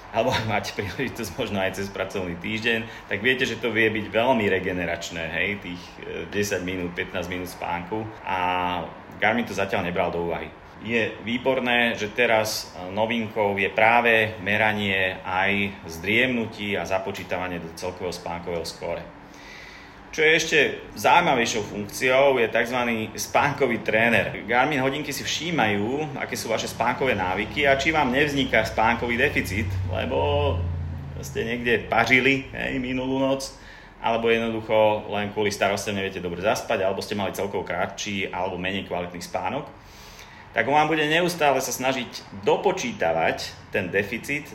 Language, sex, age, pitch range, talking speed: Slovak, male, 30-49, 90-120 Hz, 135 wpm